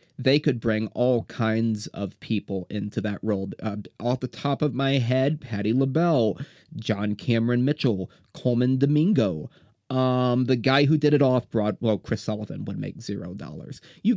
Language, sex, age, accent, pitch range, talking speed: English, male, 30-49, American, 105-130 Hz, 170 wpm